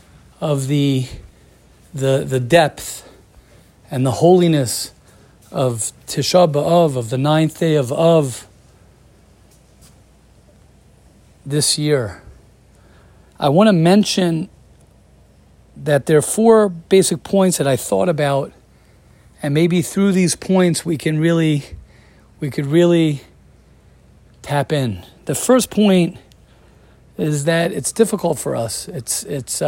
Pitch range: 130-170 Hz